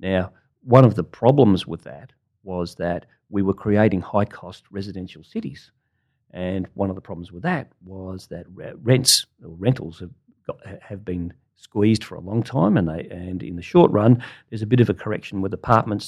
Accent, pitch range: Australian, 95-120 Hz